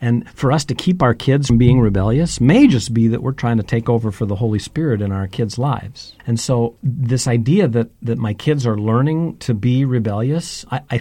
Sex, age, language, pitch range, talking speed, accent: male, 50-69, English, 110-135 Hz, 230 wpm, American